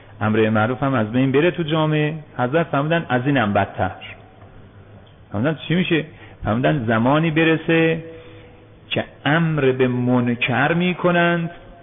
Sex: male